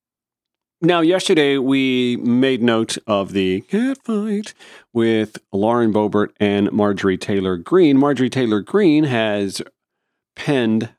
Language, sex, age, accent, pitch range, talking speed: English, male, 40-59, American, 105-135 Hz, 115 wpm